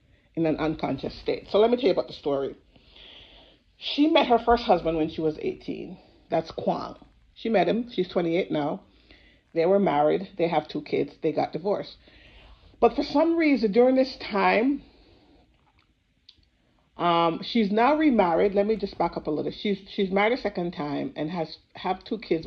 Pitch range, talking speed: 165-230 Hz, 180 wpm